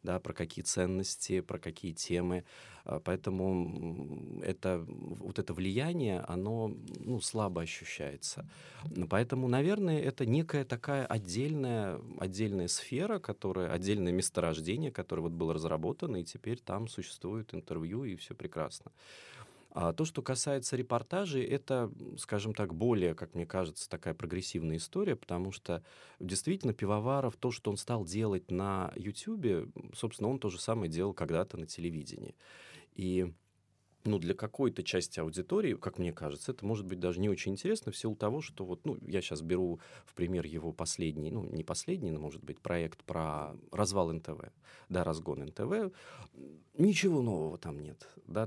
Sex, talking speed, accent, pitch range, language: male, 150 wpm, native, 85-115 Hz, Russian